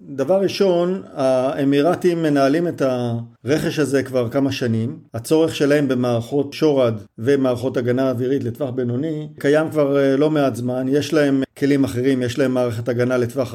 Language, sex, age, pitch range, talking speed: Hebrew, male, 50-69, 135-165 Hz, 145 wpm